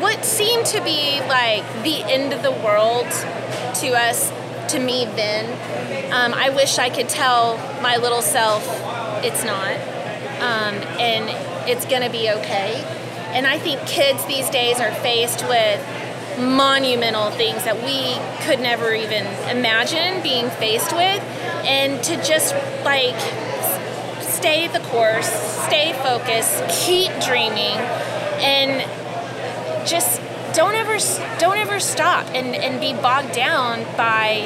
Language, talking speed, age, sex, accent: English, 130 wpm, 30-49, female, American